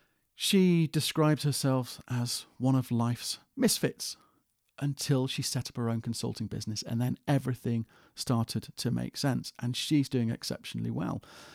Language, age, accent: English, 40-59, British